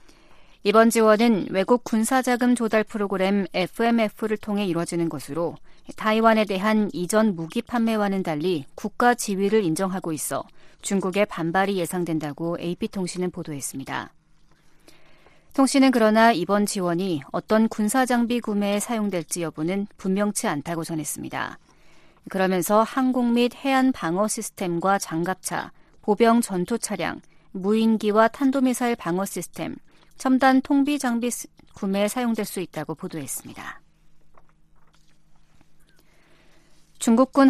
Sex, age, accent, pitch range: female, 40-59, native, 180-240 Hz